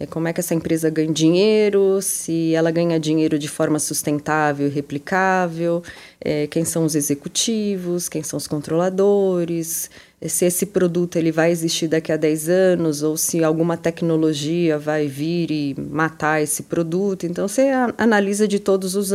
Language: Portuguese